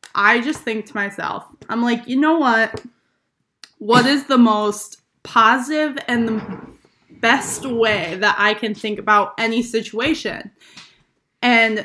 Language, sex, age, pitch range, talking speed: English, female, 10-29, 205-245 Hz, 135 wpm